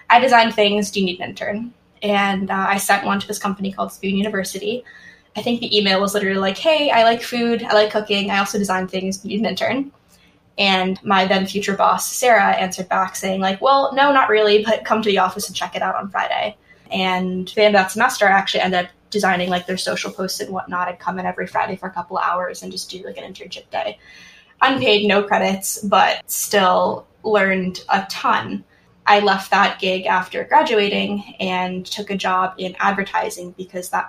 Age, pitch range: 10-29, 185-215 Hz